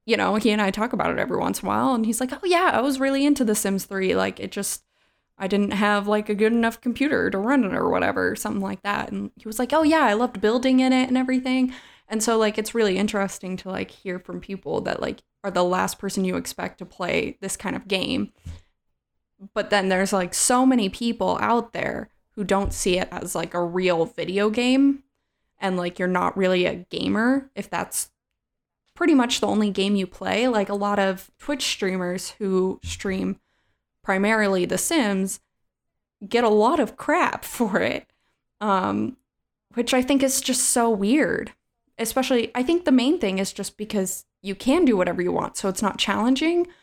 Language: English